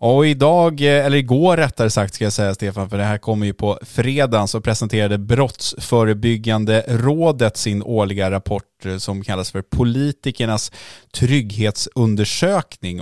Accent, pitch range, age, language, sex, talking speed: Norwegian, 100-120 Hz, 20-39, Swedish, male, 135 wpm